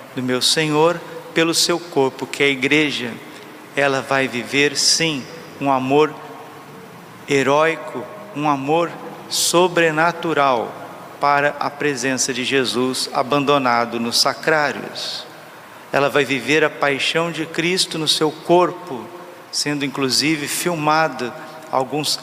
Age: 50-69